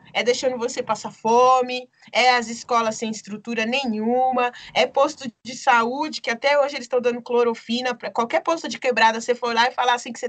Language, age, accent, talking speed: Portuguese, 20-39, Brazilian, 205 wpm